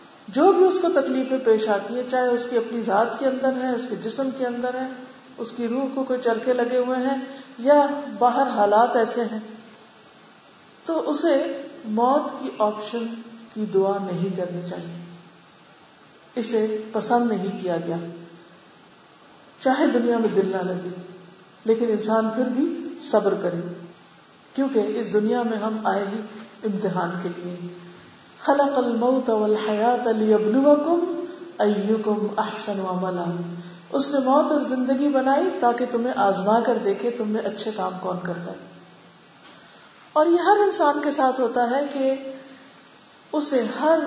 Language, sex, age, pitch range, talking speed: Urdu, female, 50-69, 210-265 Hz, 115 wpm